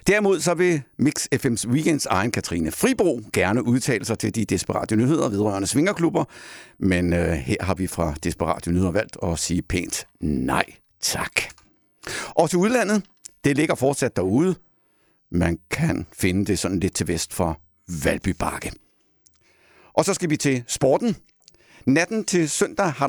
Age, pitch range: 60-79, 90-140 Hz